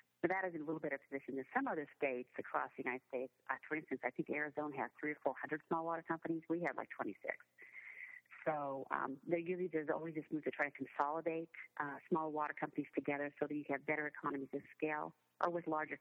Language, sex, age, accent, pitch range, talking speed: English, female, 40-59, American, 145-165 Hz, 230 wpm